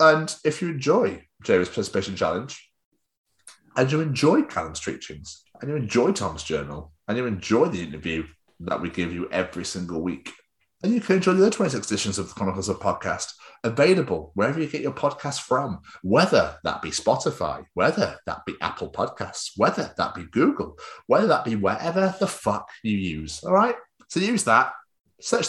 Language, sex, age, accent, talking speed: English, male, 30-49, British, 180 wpm